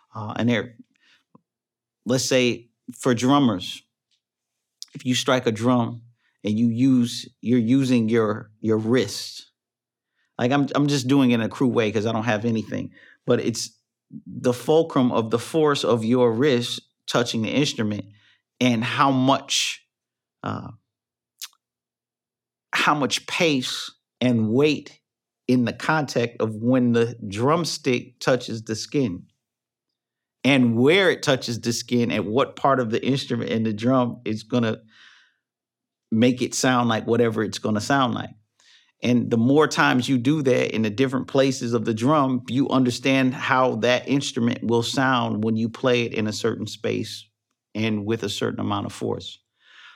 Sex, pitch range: male, 115-130 Hz